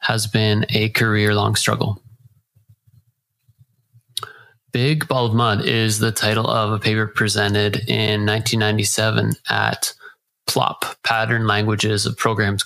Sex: male